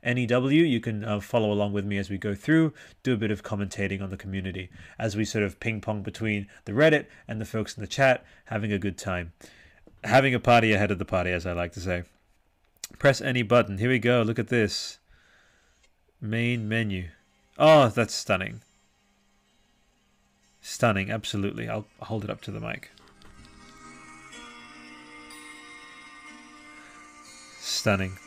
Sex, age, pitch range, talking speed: male, 30-49, 100-120 Hz, 165 wpm